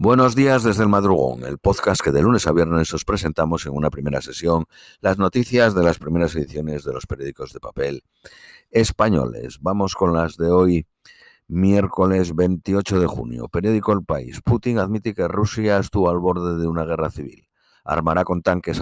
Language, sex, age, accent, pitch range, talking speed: Spanish, male, 50-69, Spanish, 85-110 Hz, 180 wpm